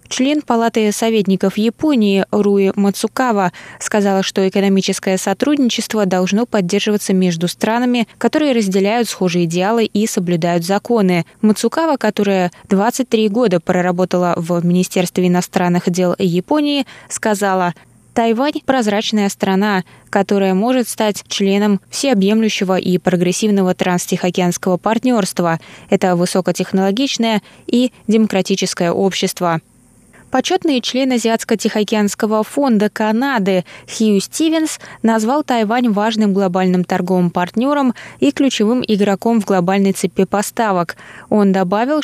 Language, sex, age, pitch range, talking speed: Russian, female, 20-39, 185-235 Hz, 105 wpm